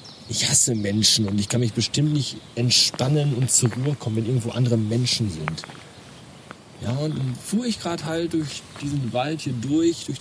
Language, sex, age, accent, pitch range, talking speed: German, male, 40-59, German, 110-150 Hz, 190 wpm